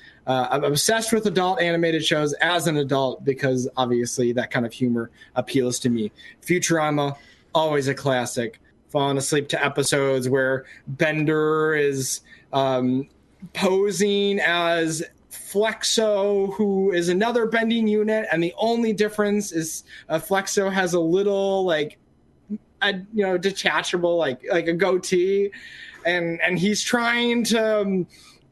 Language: English